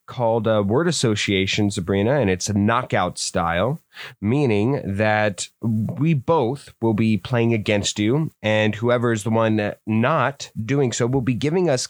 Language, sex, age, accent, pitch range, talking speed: English, male, 20-39, American, 105-135 Hz, 165 wpm